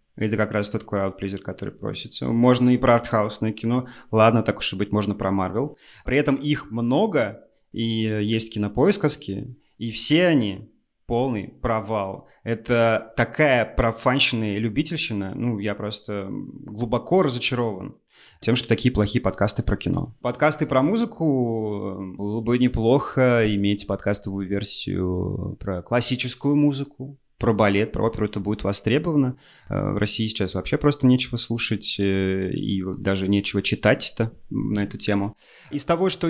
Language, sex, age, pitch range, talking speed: Russian, male, 30-49, 100-130 Hz, 140 wpm